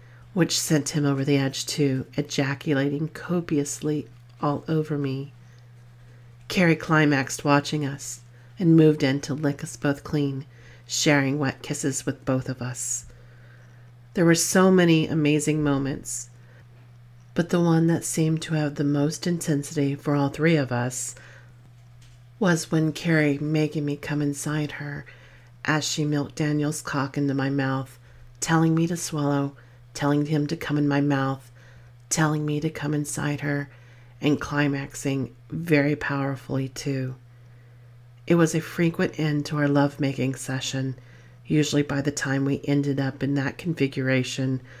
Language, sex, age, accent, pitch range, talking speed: English, female, 40-59, American, 125-150 Hz, 145 wpm